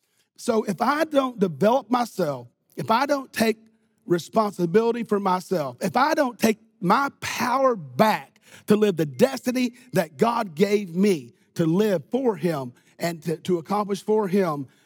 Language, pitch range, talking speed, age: English, 160-220 Hz, 155 wpm, 40-59